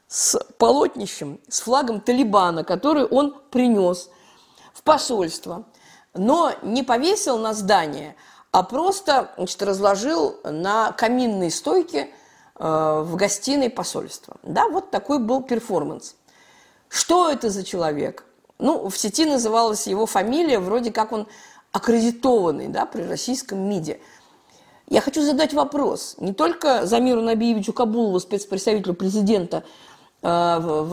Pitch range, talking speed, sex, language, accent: 200-285 Hz, 115 wpm, female, Russian, native